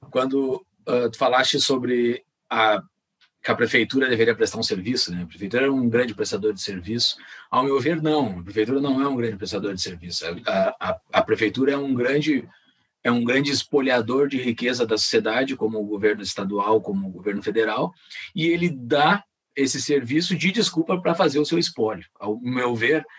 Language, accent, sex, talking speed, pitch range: Portuguese, Brazilian, male, 190 wpm, 120-160 Hz